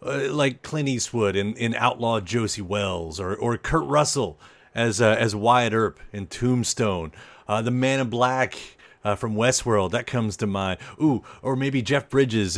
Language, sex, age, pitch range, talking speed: English, male, 40-59, 110-145 Hz, 170 wpm